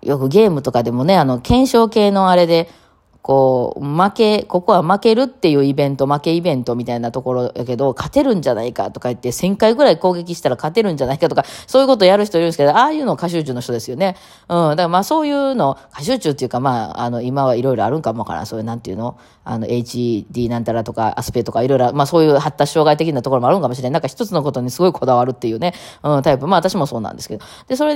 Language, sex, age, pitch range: Japanese, female, 20-39, 130-200 Hz